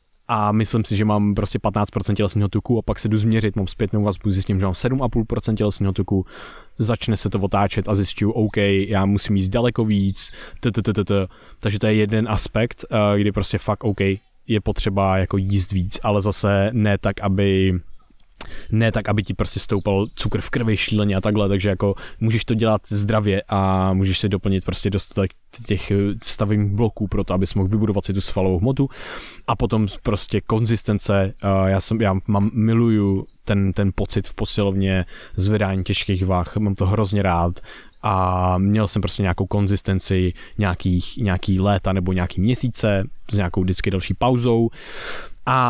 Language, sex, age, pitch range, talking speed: Czech, male, 20-39, 100-115 Hz, 170 wpm